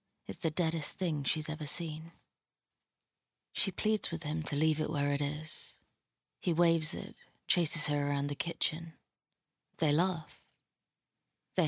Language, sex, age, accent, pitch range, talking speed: English, female, 20-39, British, 150-170 Hz, 145 wpm